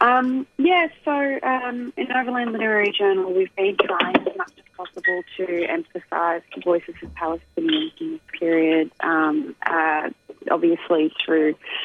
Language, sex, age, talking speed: English, female, 30-49, 145 wpm